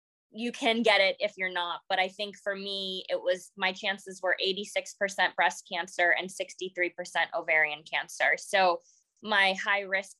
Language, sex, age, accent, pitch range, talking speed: English, female, 20-39, American, 175-210 Hz, 165 wpm